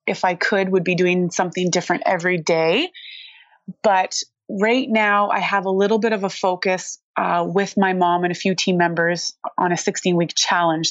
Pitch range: 175-200 Hz